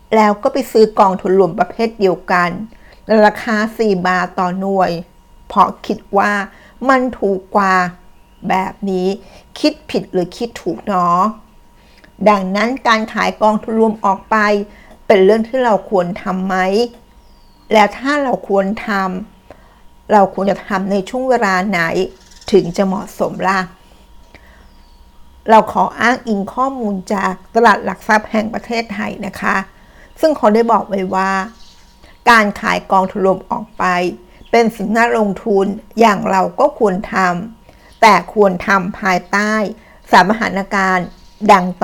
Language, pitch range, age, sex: Thai, 185-220 Hz, 60-79, female